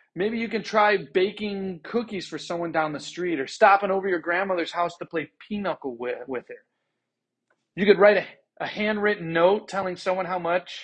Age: 40-59